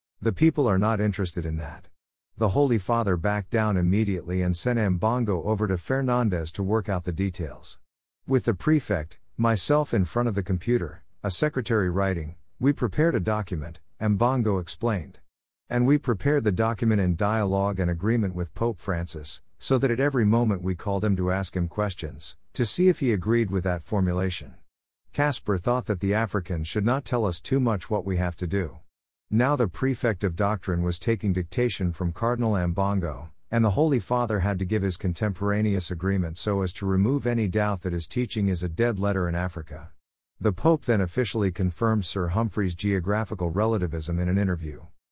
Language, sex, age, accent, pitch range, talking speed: English, male, 50-69, American, 90-115 Hz, 185 wpm